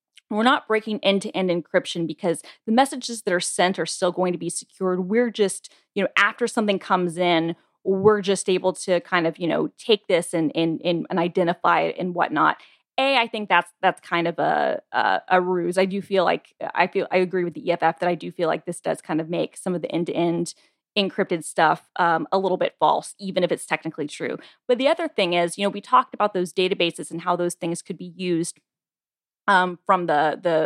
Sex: female